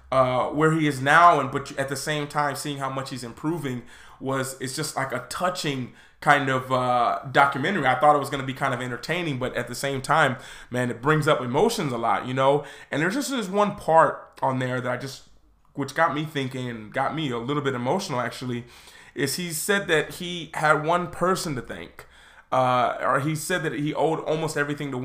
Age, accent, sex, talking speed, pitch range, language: 20-39, American, male, 220 wpm, 130-155 Hz, English